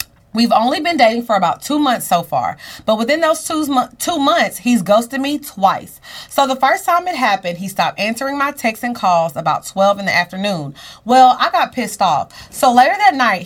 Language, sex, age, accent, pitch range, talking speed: English, female, 30-49, American, 190-270 Hz, 210 wpm